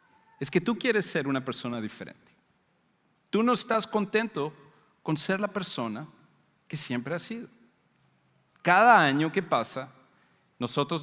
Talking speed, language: 135 wpm, English